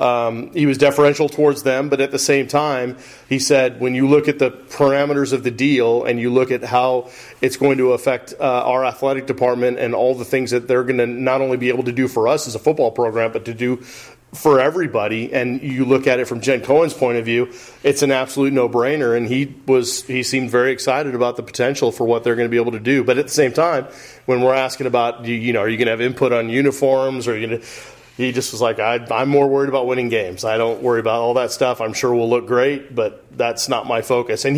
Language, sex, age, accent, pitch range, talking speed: English, male, 30-49, American, 125-140 Hz, 255 wpm